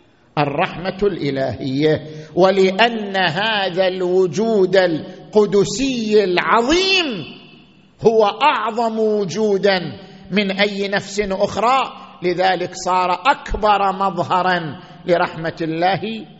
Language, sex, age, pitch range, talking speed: Arabic, male, 50-69, 165-230 Hz, 75 wpm